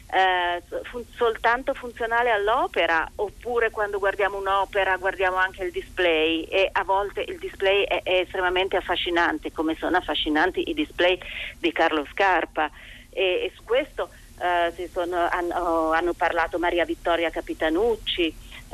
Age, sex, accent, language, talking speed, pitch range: 40-59, female, native, Italian, 120 wpm, 175-220 Hz